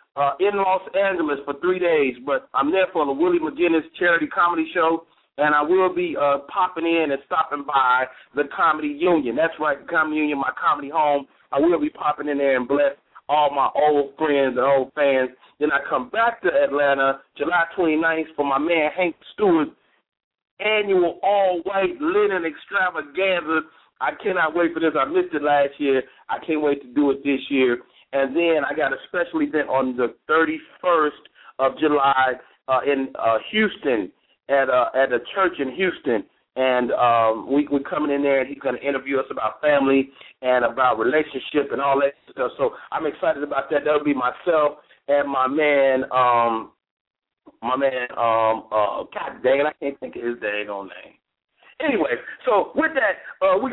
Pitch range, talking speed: 135-185 Hz, 185 wpm